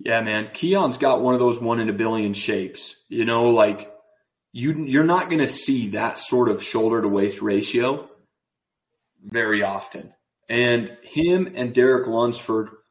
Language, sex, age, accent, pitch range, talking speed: English, male, 30-49, American, 120-185 Hz, 135 wpm